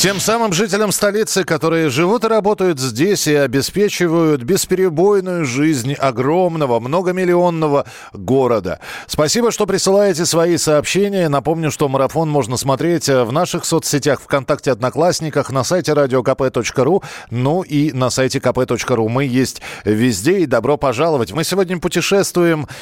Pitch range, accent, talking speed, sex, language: 130-185 Hz, native, 125 wpm, male, Russian